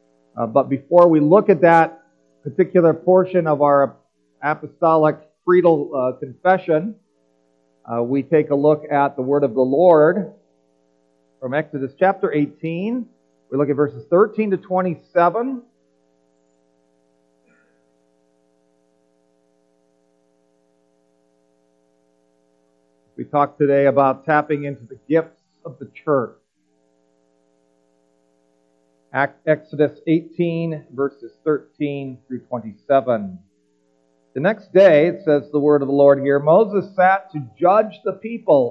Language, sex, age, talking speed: English, male, 50-69, 110 wpm